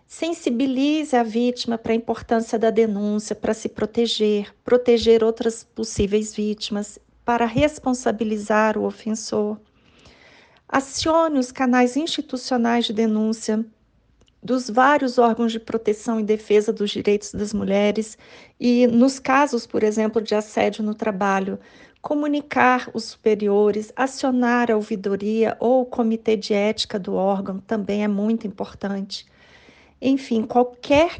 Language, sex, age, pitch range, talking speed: Portuguese, female, 40-59, 215-250 Hz, 125 wpm